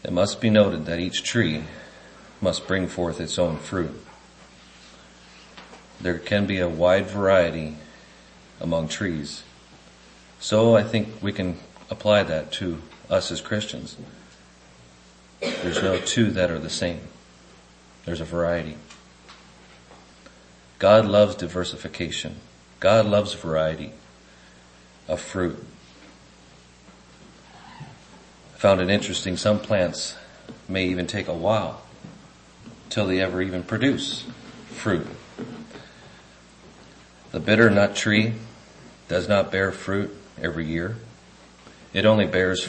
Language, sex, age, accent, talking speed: English, male, 40-59, American, 110 wpm